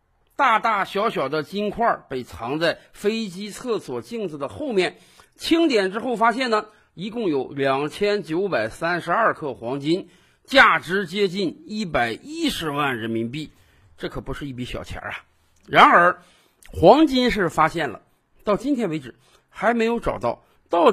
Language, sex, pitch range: Chinese, male, 150-245 Hz